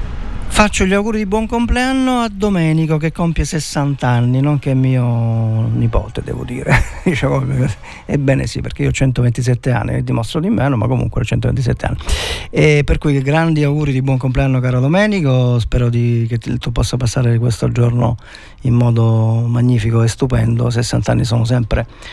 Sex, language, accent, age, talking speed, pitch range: male, Italian, native, 50-69, 165 wpm, 115-135 Hz